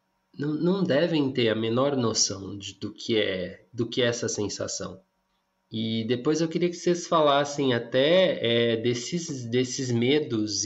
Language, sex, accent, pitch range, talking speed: Portuguese, male, Brazilian, 110-135 Hz, 130 wpm